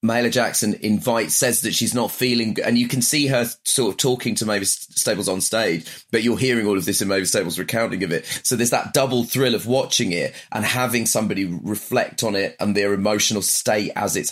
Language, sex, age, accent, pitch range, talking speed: English, male, 30-49, British, 105-130 Hz, 225 wpm